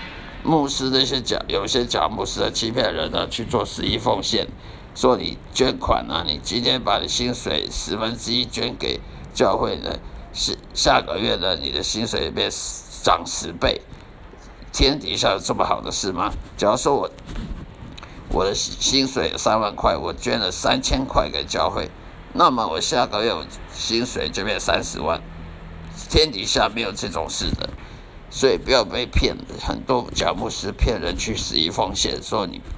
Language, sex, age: Chinese, male, 50-69